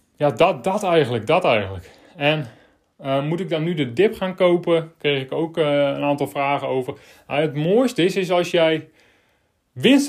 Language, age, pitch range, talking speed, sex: Dutch, 30-49, 135-170 Hz, 185 wpm, male